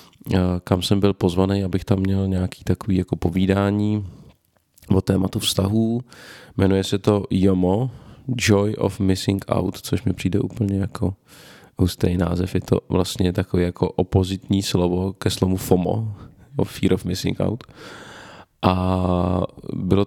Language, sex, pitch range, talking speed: Czech, male, 90-105 Hz, 140 wpm